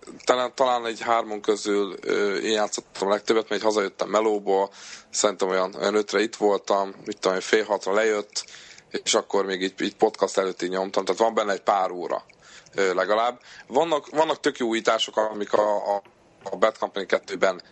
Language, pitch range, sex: Hungarian, 100-120 Hz, male